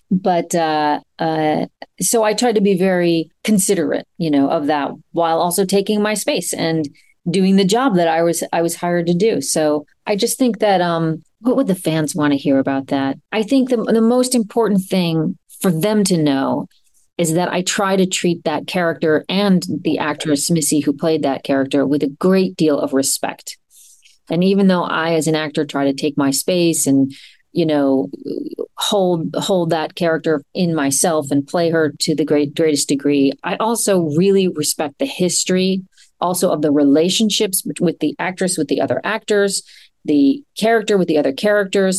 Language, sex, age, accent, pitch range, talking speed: English, female, 40-59, American, 155-205 Hz, 185 wpm